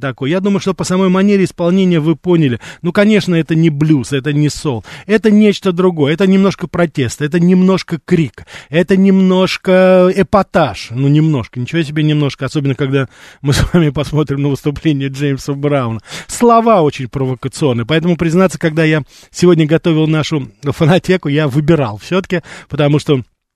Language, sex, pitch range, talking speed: Russian, male, 140-185 Hz, 155 wpm